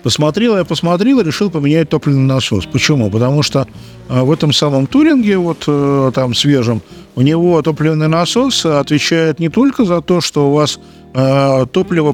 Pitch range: 130-170 Hz